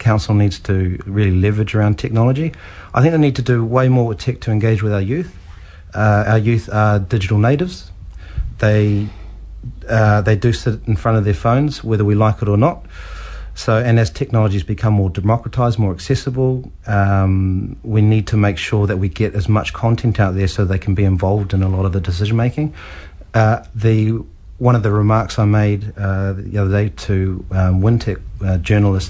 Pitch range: 95-115 Hz